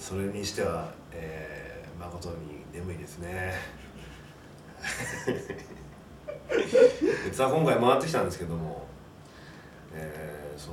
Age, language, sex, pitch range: 40-59, Japanese, male, 80-100 Hz